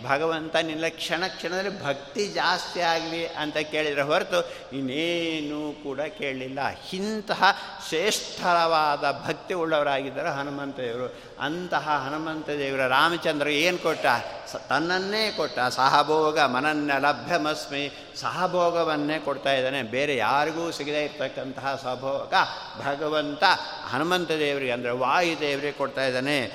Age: 60-79